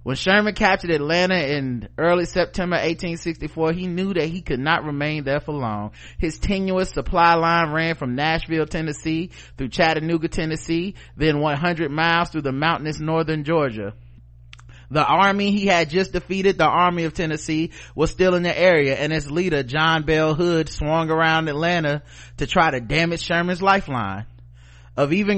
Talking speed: 165 wpm